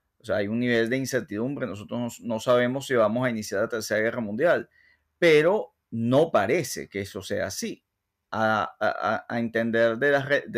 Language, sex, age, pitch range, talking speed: Spanish, male, 30-49, 115-145 Hz, 170 wpm